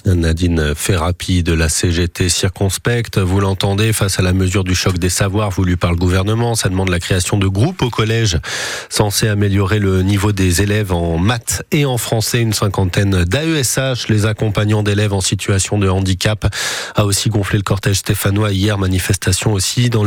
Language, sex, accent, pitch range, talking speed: French, male, French, 105-140 Hz, 175 wpm